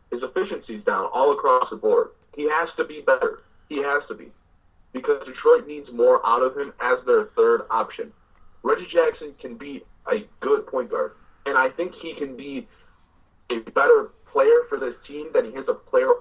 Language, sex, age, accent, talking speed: English, male, 30-49, American, 195 wpm